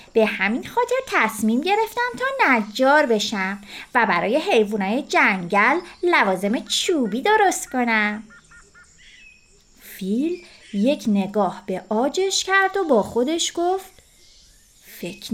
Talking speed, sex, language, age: 105 wpm, female, Persian, 30-49